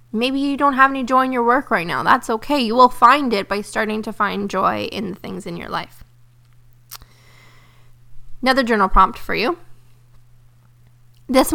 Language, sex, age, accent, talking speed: English, female, 20-39, American, 175 wpm